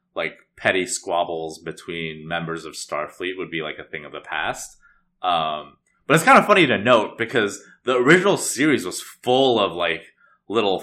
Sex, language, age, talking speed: male, English, 20-39, 175 wpm